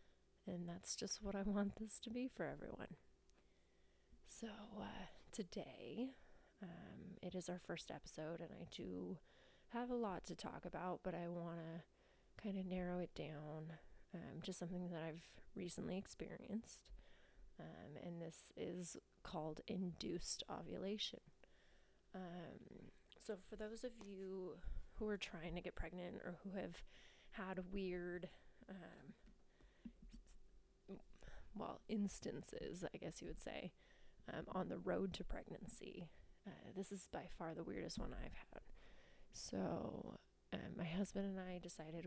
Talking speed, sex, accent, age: 145 wpm, female, American, 20-39